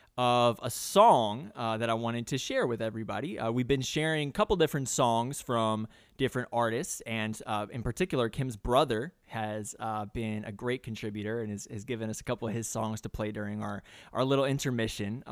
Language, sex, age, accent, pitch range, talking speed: English, male, 20-39, American, 110-140 Hz, 200 wpm